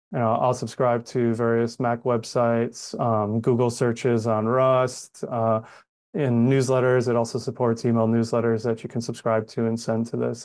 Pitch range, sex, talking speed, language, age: 115-125 Hz, male, 170 wpm, English, 30-49